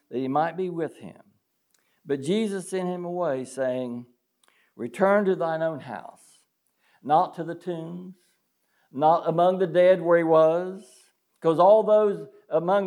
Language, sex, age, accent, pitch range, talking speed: English, male, 60-79, American, 125-190 Hz, 150 wpm